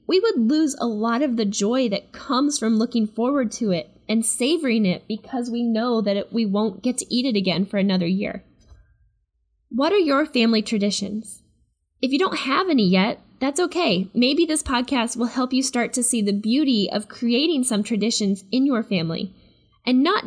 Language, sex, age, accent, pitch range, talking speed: English, female, 10-29, American, 210-265 Hz, 190 wpm